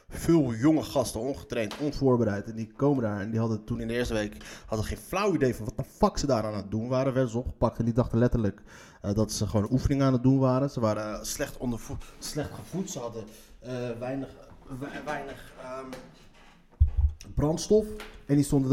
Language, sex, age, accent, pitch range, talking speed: Dutch, male, 20-39, Dutch, 110-145 Hz, 210 wpm